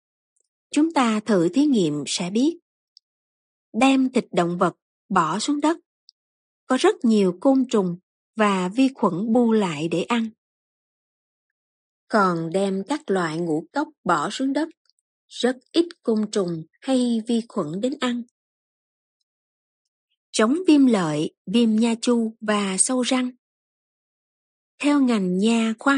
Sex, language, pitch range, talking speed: female, Vietnamese, 195-260 Hz, 130 wpm